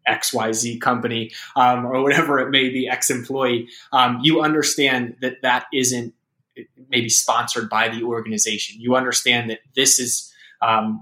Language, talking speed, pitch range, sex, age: English, 145 wpm, 115-135 Hz, male, 20-39